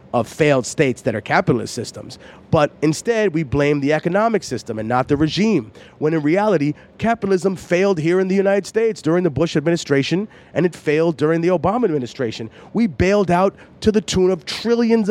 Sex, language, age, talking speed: male, English, 30-49, 185 wpm